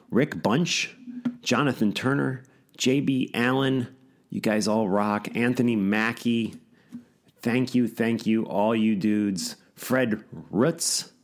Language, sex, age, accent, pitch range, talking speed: English, male, 40-59, American, 85-120 Hz, 110 wpm